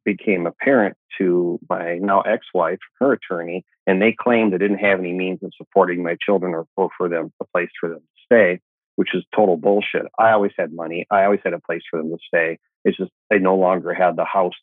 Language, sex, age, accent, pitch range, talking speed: English, male, 40-59, American, 85-105 Hz, 230 wpm